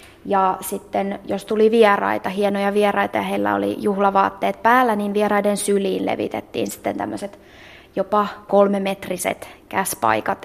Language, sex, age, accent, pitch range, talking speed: Finnish, female, 20-39, native, 195-215 Hz, 120 wpm